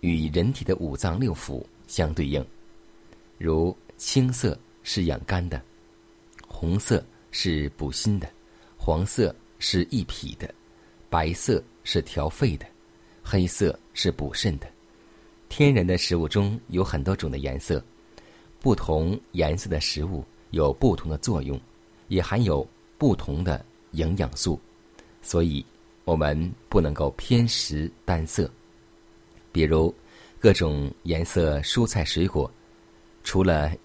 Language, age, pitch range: Chinese, 50-69, 80-110 Hz